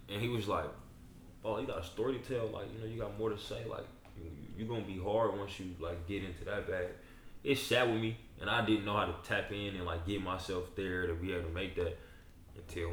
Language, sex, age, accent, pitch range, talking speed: English, male, 20-39, American, 85-105 Hz, 260 wpm